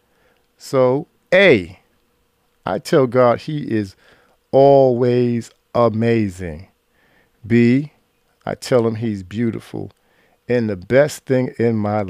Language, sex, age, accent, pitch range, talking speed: English, male, 50-69, American, 105-130 Hz, 105 wpm